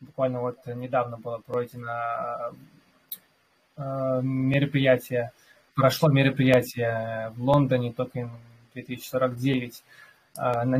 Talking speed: 70 wpm